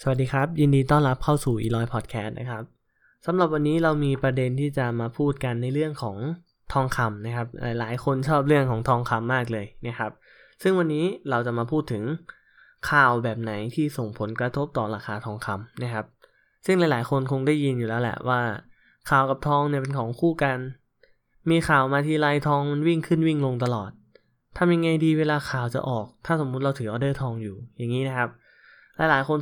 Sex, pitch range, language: male, 115-150 Hz, Thai